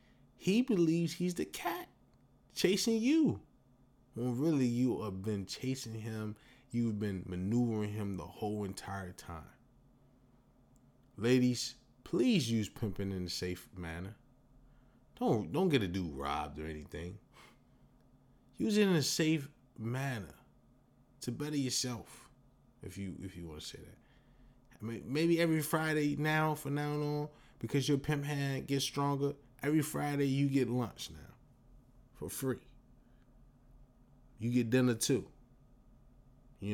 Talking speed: 135 wpm